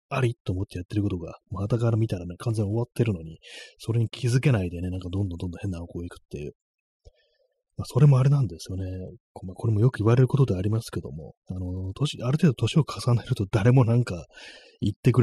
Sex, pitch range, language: male, 90-125 Hz, Japanese